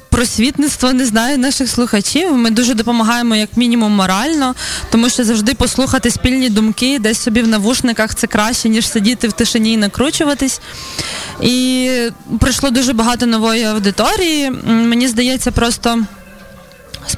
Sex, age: female, 20-39